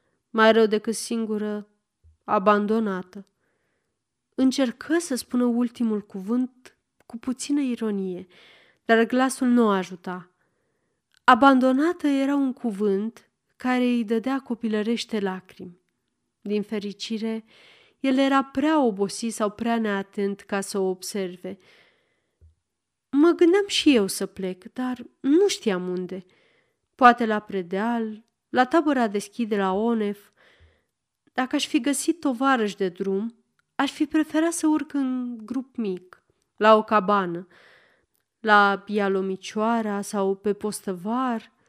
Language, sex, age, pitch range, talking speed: Romanian, female, 30-49, 200-260 Hz, 115 wpm